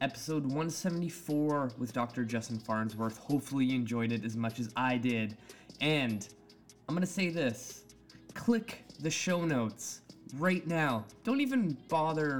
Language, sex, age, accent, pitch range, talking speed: English, male, 20-39, American, 115-140 Hz, 145 wpm